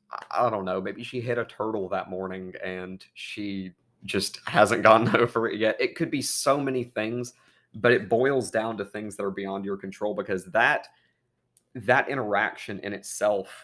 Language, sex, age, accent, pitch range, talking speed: English, male, 30-49, American, 95-115 Hz, 180 wpm